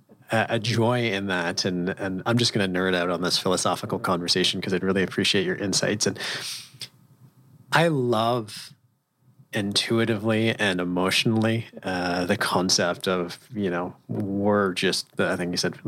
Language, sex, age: English, male, 30-49